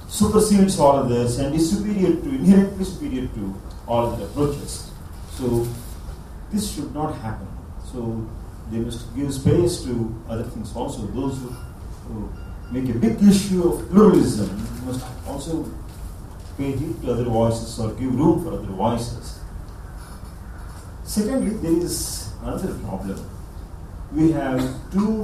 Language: English